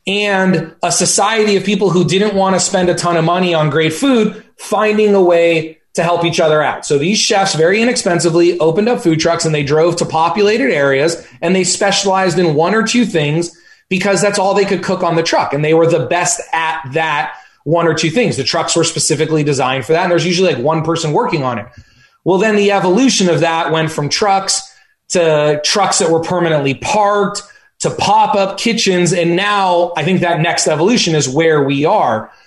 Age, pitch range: 20-39, 160-200 Hz